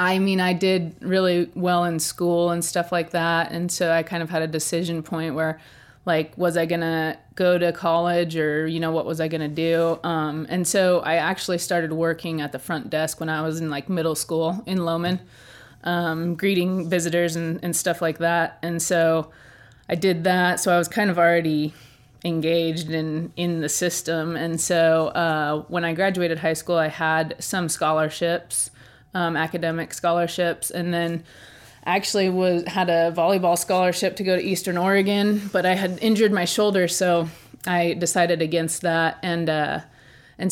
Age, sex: 30-49, female